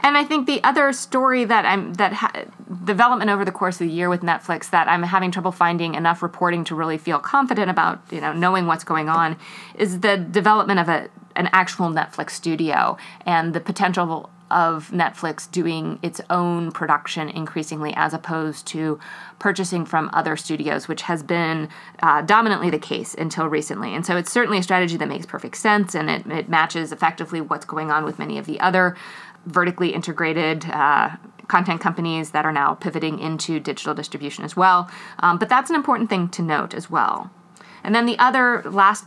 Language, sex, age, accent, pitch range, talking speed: English, female, 30-49, American, 165-200 Hz, 190 wpm